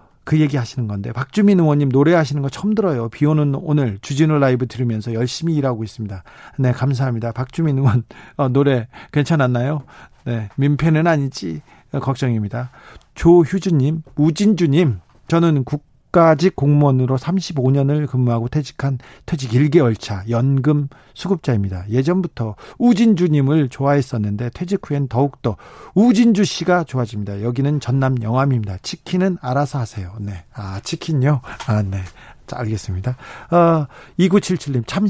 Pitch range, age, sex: 125-165 Hz, 40-59, male